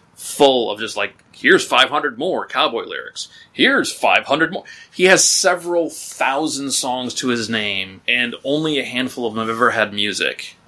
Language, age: English, 30-49